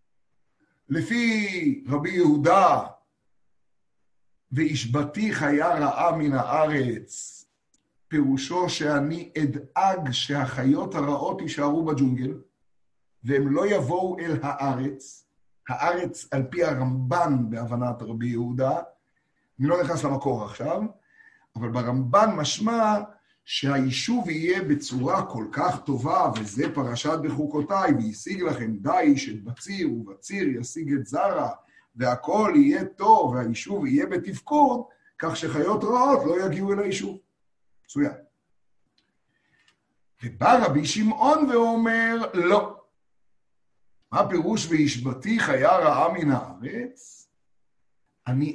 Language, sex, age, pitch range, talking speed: Hebrew, male, 50-69, 135-200 Hz, 100 wpm